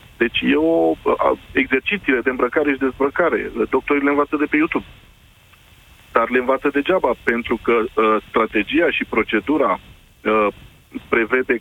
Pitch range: 110-145 Hz